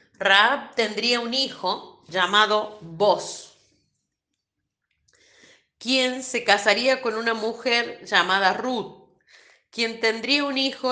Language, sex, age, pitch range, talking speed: Spanish, female, 40-59, 180-235 Hz, 100 wpm